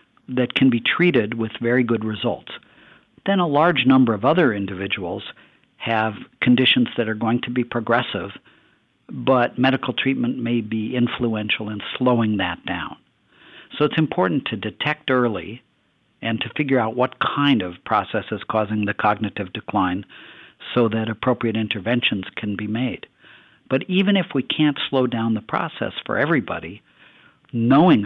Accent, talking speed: American, 150 wpm